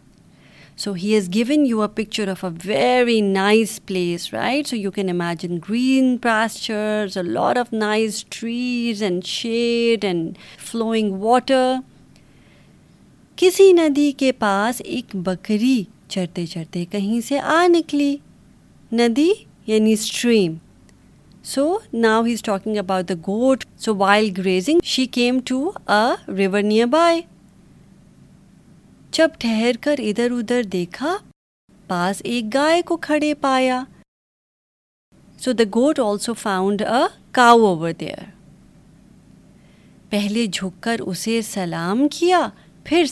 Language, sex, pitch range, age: Urdu, female, 195-255 Hz, 30-49